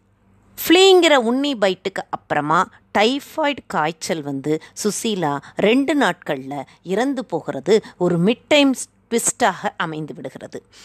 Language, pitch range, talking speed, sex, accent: Tamil, 145-240 Hz, 100 wpm, female, native